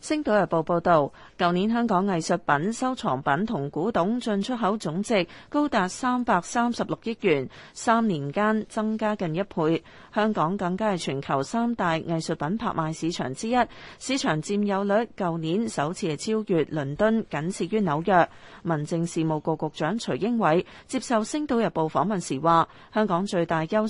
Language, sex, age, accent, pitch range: Chinese, female, 30-49, native, 165-220 Hz